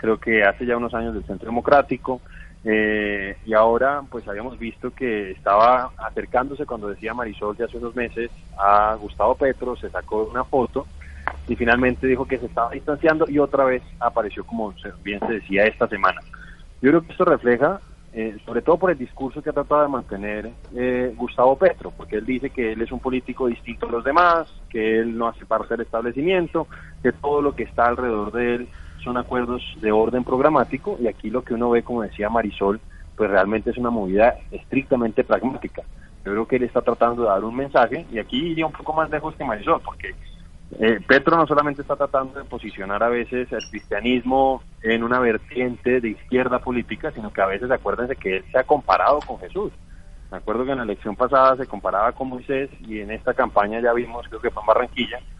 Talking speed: 205 wpm